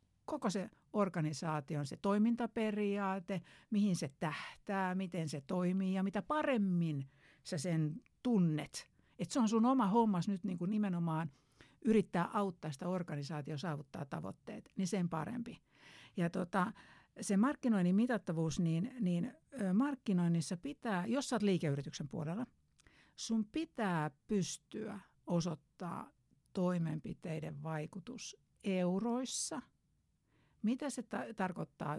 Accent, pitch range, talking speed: native, 155-205 Hz, 115 wpm